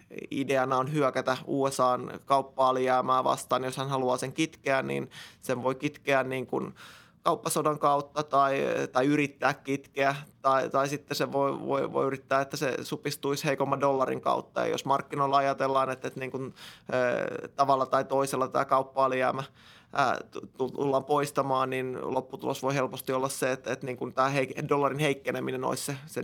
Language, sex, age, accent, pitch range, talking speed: Finnish, male, 20-39, native, 130-140 Hz, 160 wpm